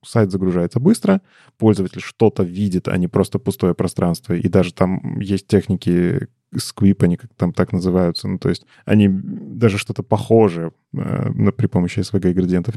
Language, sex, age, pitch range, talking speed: Russian, male, 20-39, 95-130 Hz, 155 wpm